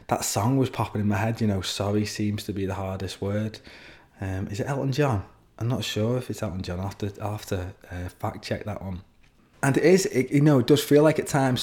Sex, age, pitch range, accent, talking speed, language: male, 20-39, 105-120 Hz, British, 245 wpm, English